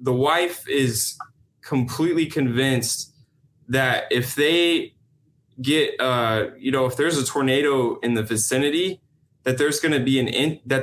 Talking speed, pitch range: 145 wpm, 115-140 Hz